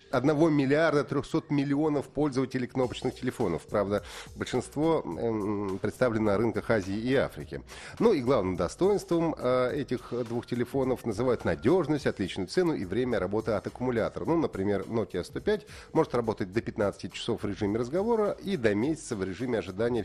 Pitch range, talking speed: 110-150 Hz, 145 wpm